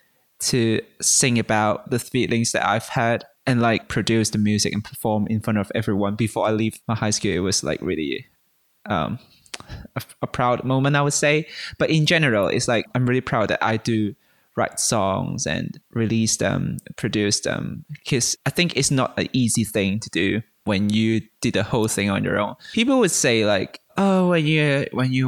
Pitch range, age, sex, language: 105-130 Hz, 20-39, male, Chinese